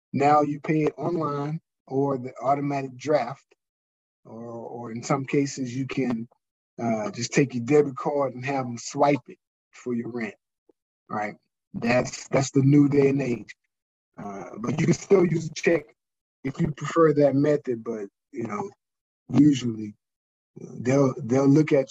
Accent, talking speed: American, 160 wpm